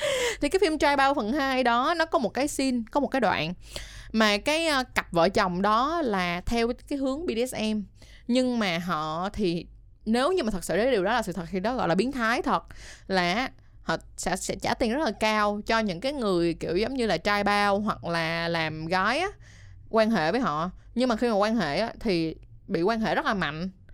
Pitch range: 195-270 Hz